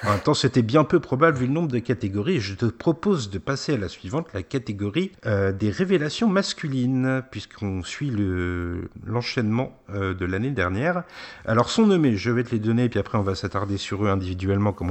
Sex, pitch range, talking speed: male, 100-145 Hz, 195 wpm